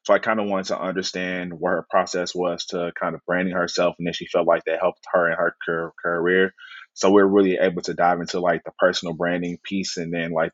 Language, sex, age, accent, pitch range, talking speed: English, male, 20-39, American, 85-95 Hz, 245 wpm